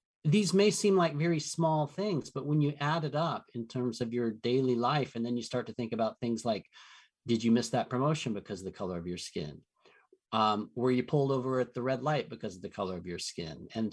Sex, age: male, 40-59